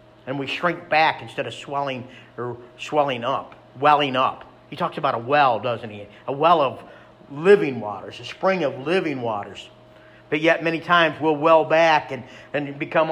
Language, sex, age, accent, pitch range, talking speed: English, male, 50-69, American, 130-155 Hz, 180 wpm